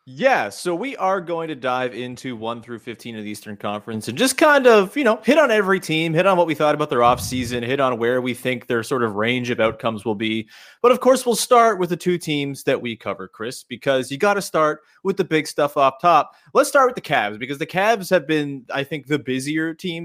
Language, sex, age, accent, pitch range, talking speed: English, male, 30-49, American, 125-180 Hz, 255 wpm